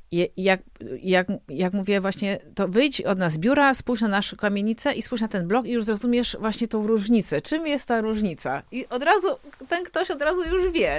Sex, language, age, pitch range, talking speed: female, Polish, 30-49, 170-215 Hz, 205 wpm